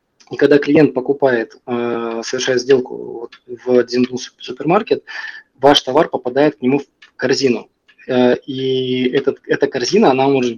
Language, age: Russian, 20-39